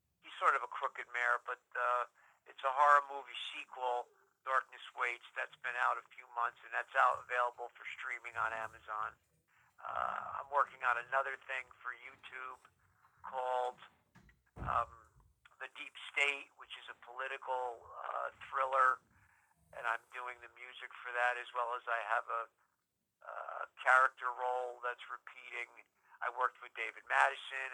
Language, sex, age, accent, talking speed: English, male, 50-69, American, 155 wpm